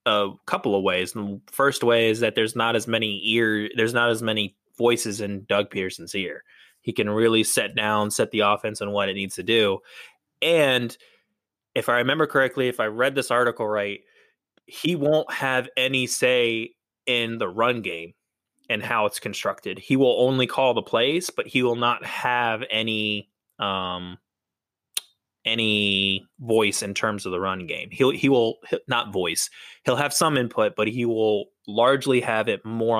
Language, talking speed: English, 180 wpm